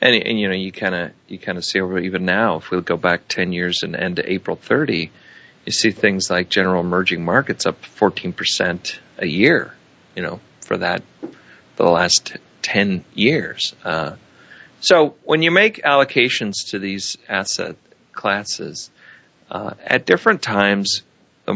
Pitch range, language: 90-110 Hz, English